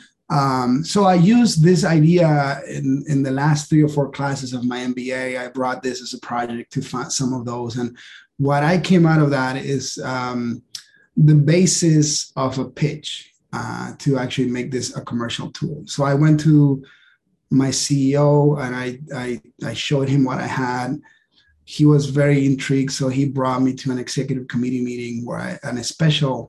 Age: 30-49